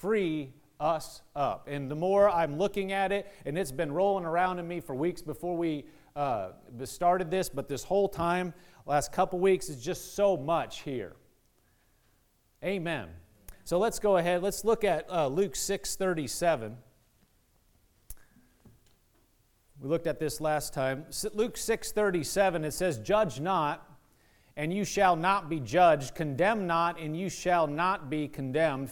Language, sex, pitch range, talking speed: English, male, 155-195 Hz, 155 wpm